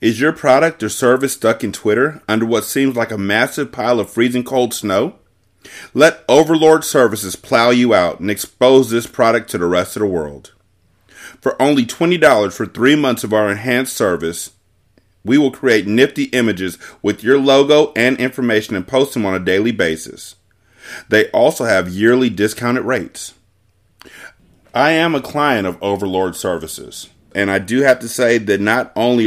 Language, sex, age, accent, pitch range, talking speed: English, male, 30-49, American, 100-125 Hz, 170 wpm